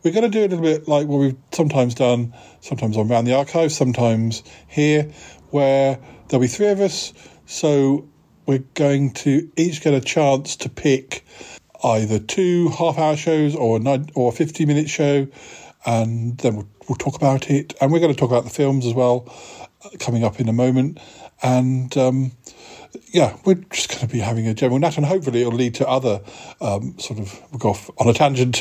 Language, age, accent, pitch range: English, 50-69, British, 120-150 Hz